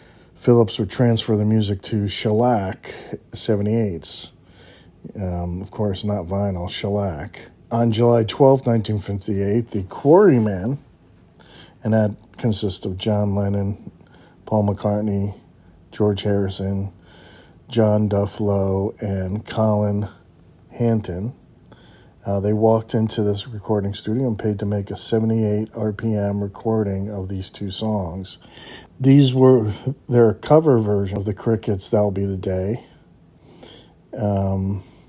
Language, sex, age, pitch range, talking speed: English, male, 40-59, 100-115 Hz, 115 wpm